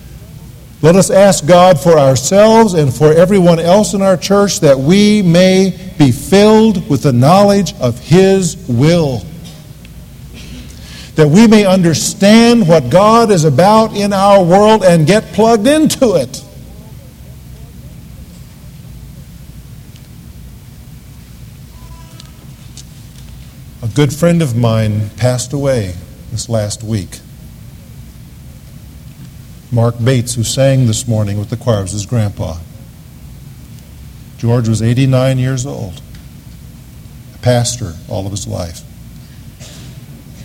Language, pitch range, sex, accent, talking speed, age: English, 120-175 Hz, male, American, 110 wpm, 50-69